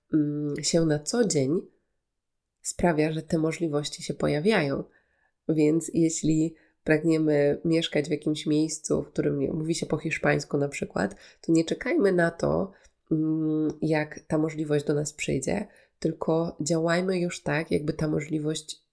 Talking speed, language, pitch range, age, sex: 135 wpm, Polish, 145-165 Hz, 20-39, female